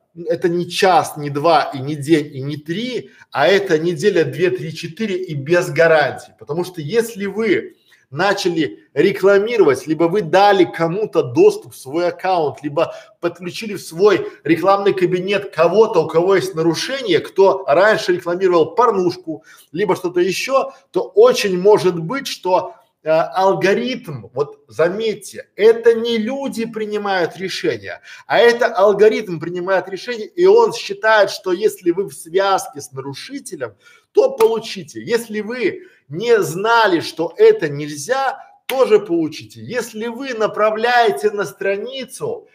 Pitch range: 170-270 Hz